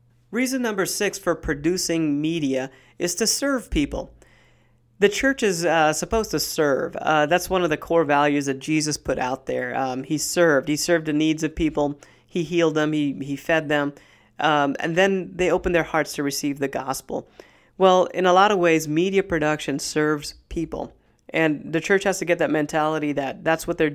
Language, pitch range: English, 150-175 Hz